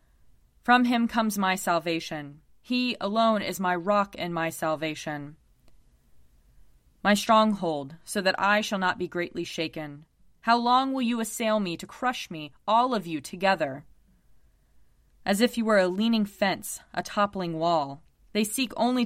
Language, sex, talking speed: English, female, 155 wpm